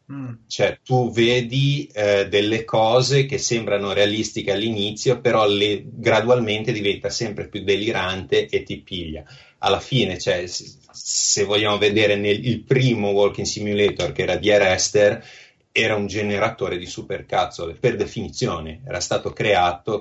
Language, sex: Italian, male